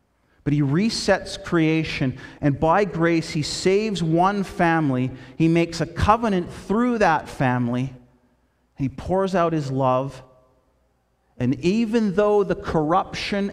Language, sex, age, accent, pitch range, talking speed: English, male, 40-59, American, 105-175 Hz, 125 wpm